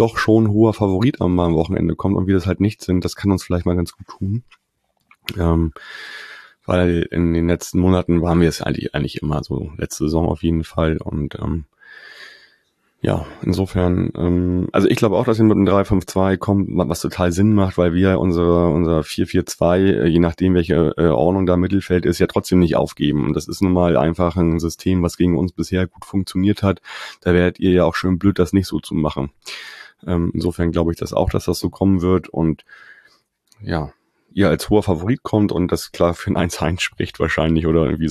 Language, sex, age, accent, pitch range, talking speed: German, male, 30-49, German, 85-95 Hz, 205 wpm